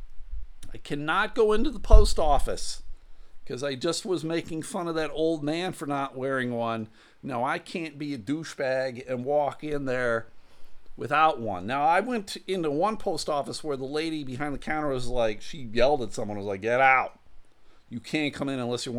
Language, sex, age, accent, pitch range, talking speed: English, male, 50-69, American, 105-160 Hz, 195 wpm